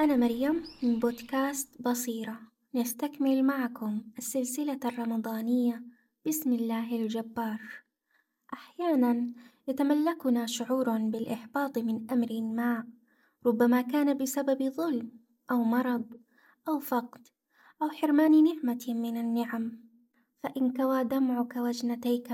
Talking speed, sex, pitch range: 95 wpm, female, 235-275 Hz